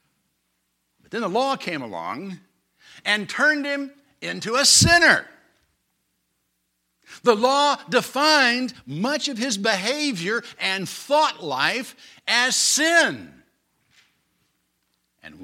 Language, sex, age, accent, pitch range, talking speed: English, male, 60-79, American, 170-270 Hz, 95 wpm